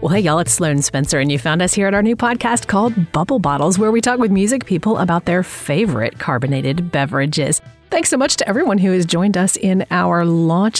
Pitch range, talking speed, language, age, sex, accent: 155-215 Hz, 230 wpm, English, 40-59, female, American